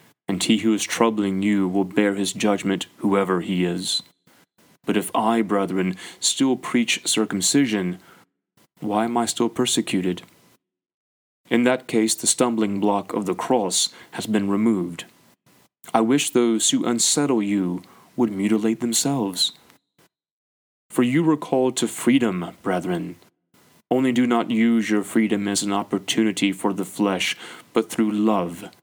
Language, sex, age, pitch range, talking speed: English, male, 30-49, 100-115 Hz, 140 wpm